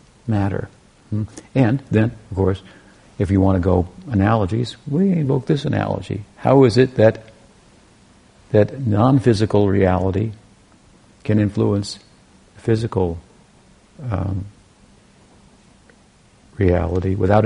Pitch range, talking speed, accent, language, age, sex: 95-115 Hz, 100 wpm, American, English, 50-69, male